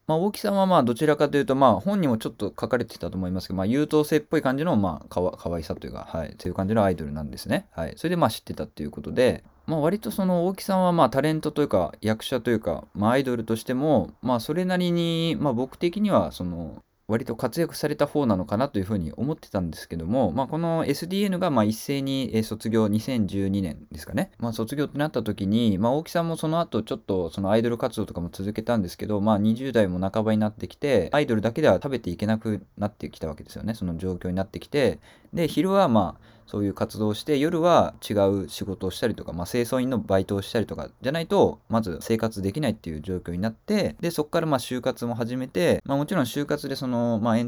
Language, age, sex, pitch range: Japanese, 20-39, male, 95-140 Hz